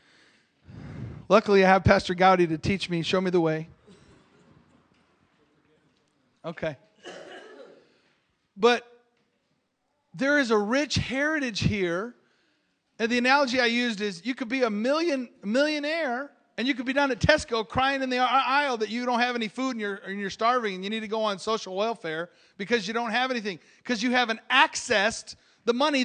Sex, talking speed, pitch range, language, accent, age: male, 170 wpm, 205-260 Hz, English, American, 40-59